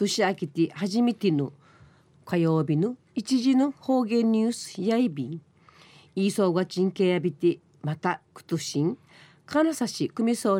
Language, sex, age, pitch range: Japanese, female, 40-59, 155-215 Hz